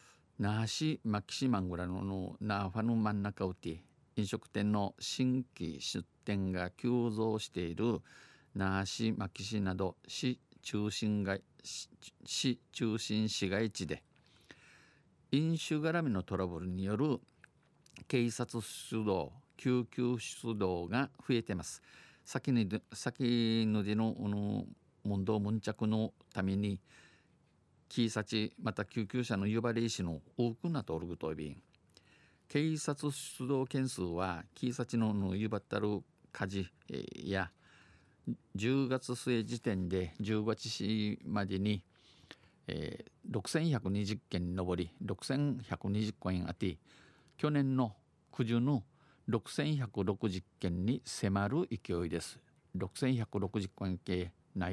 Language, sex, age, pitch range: Japanese, male, 50-69, 95-125 Hz